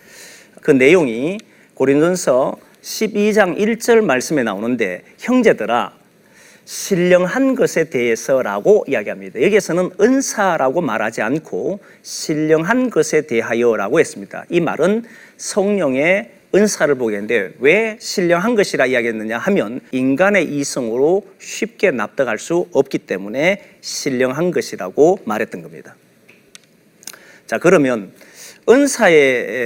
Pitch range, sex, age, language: 145-220 Hz, male, 40-59, Korean